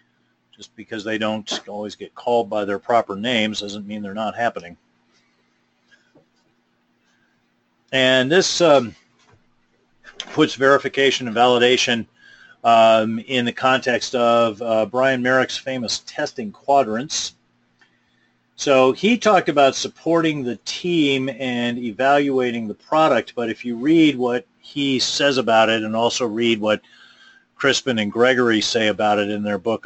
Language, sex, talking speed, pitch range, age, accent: English, male, 135 wpm, 110-135 Hz, 40-59, American